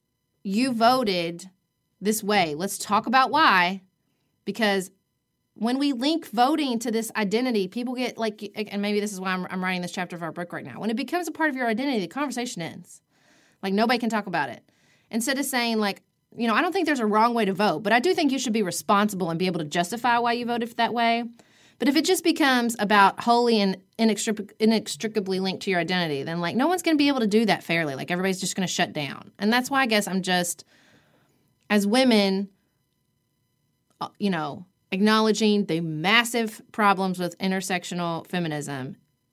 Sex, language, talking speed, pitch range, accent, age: female, English, 205 wpm, 175-235 Hz, American, 30-49